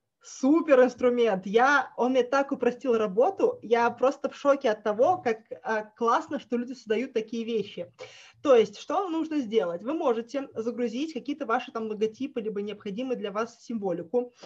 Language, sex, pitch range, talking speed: Russian, female, 225-280 Hz, 160 wpm